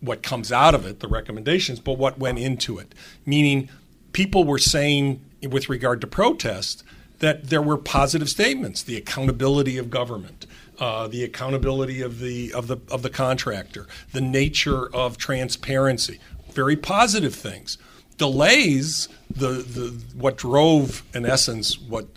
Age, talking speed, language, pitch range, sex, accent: 50-69, 140 wpm, English, 125-155 Hz, male, American